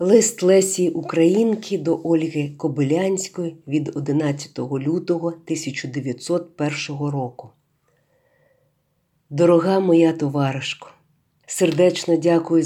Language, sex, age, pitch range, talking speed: Ukrainian, female, 50-69, 145-175 Hz, 75 wpm